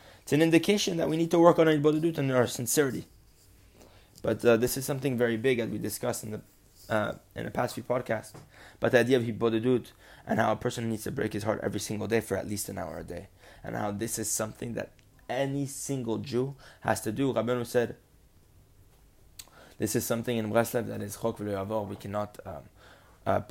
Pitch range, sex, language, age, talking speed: 100-135 Hz, male, English, 20-39, 210 wpm